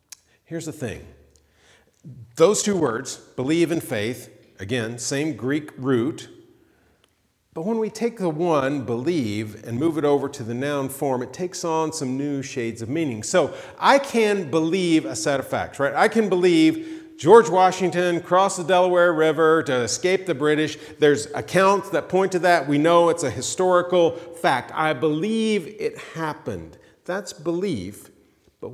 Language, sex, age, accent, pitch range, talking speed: English, male, 40-59, American, 115-170 Hz, 160 wpm